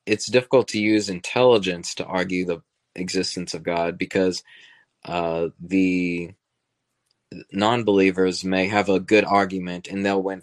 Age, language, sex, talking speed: 20-39, English, male, 130 wpm